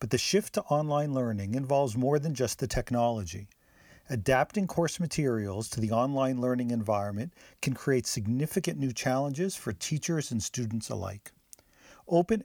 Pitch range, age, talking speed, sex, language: 115-150 Hz, 50-69, 150 wpm, male, English